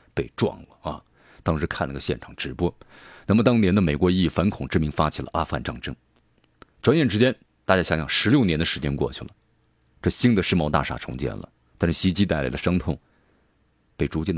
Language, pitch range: Chinese, 75-105 Hz